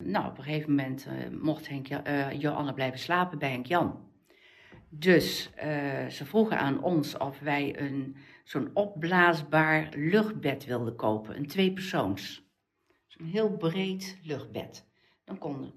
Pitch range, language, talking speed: 140-180 Hz, Dutch, 145 wpm